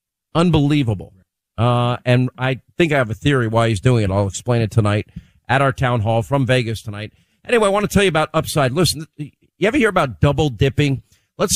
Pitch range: 120-160 Hz